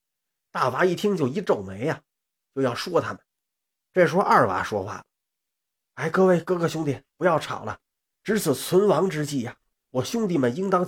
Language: Chinese